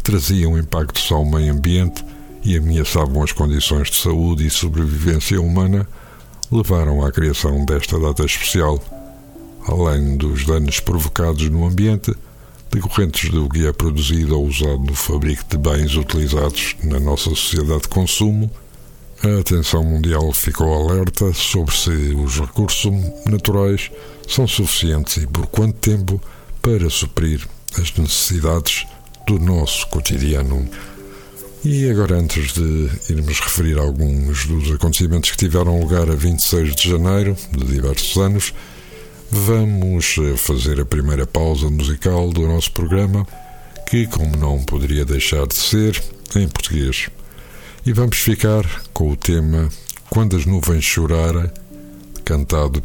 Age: 60-79